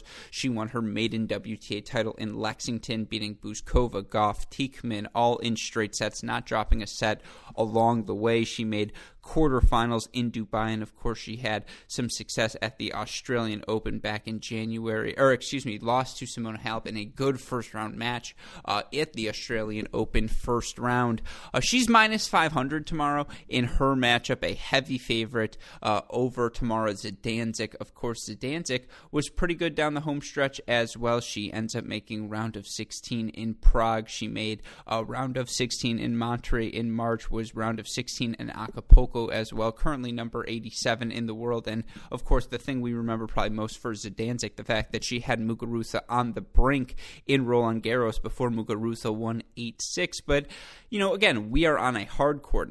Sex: male